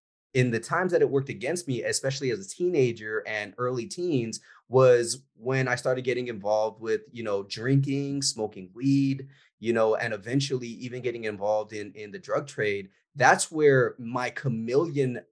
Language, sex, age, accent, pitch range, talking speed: English, male, 20-39, American, 115-140 Hz, 170 wpm